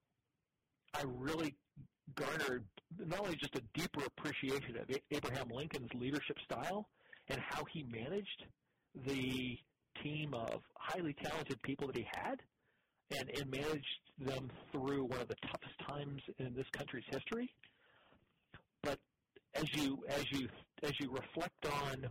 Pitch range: 130-150 Hz